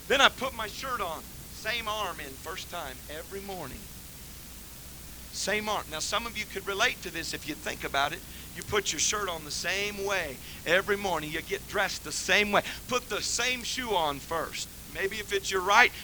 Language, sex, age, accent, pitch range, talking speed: English, male, 40-59, American, 170-225 Hz, 205 wpm